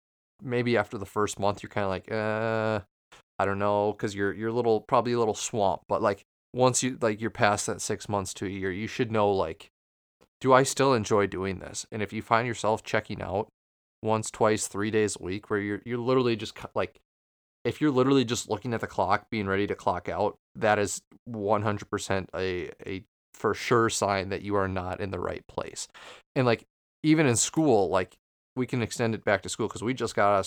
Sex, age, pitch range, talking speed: male, 30-49, 100-115 Hz, 220 wpm